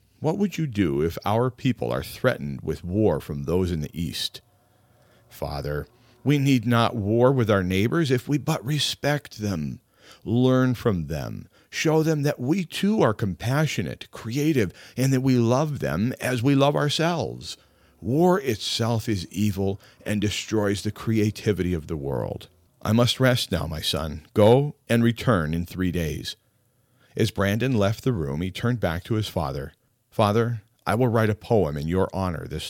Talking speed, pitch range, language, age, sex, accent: 170 wpm, 90-125 Hz, English, 40-59, male, American